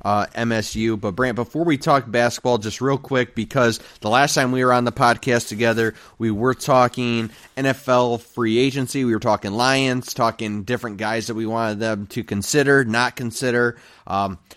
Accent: American